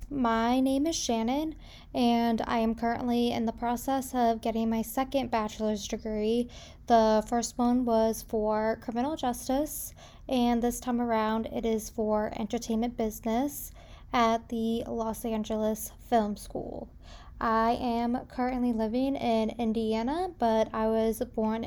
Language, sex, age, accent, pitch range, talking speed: English, female, 10-29, American, 220-245 Hz, 135 wpm